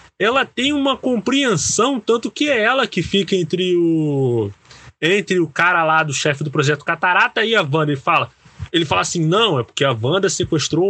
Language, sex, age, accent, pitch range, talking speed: Portuguese, male, 20-39, Brazilian, 160-255 Hz, 185 wpm